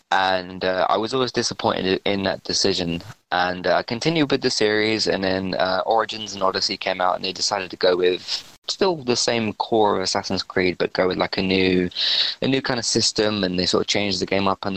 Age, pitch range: 20-39, 90-110 Hz